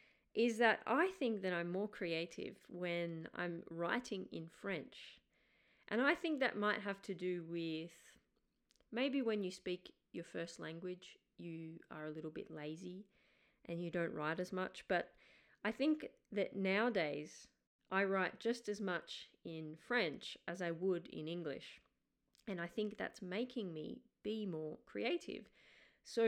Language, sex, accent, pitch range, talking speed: English, female, Australian, 170-205 Hz, 155 wpm